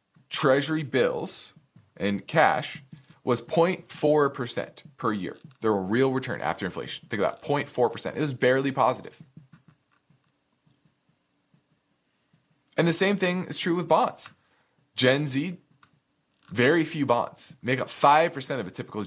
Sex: male